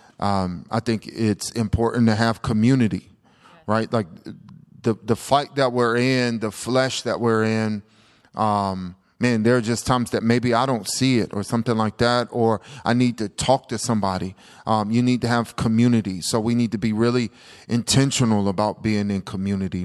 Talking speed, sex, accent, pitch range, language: 185 wpm, male, American, 105-125 Hz, English